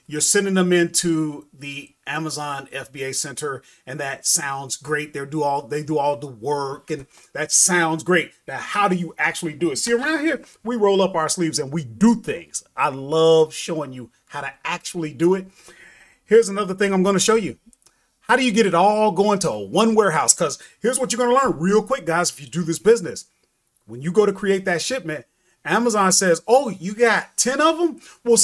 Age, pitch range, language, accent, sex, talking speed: 30-49, 155-220 Hz, English, American, male, 205 wpm